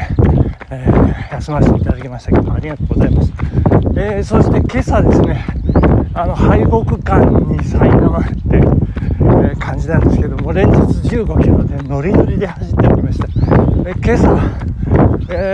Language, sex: Japanese, male